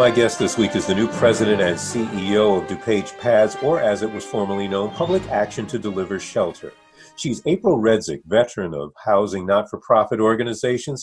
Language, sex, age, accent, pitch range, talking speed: English, male, 40-59, American, 105-130 Hz, 175 wpm